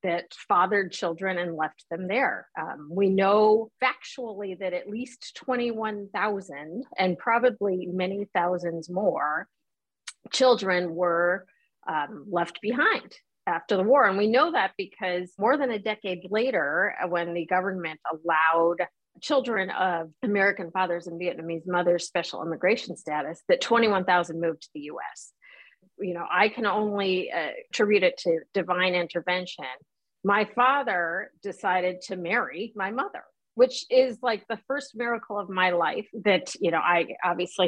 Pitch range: 175-220 Hz